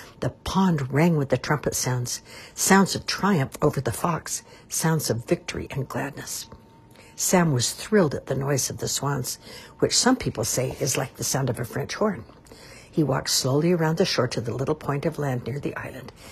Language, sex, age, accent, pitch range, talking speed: English, female, 60-79, American, 125-155 Hz, 200 wpm